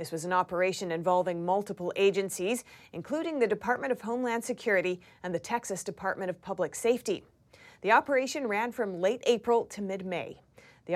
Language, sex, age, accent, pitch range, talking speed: English, female, 30-49, American, 180-235 Hz, 160 wpm